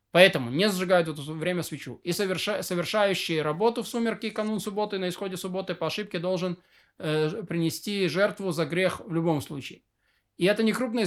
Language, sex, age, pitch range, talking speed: Russian, male, 20-39, 155-190 Hz, 175 wpm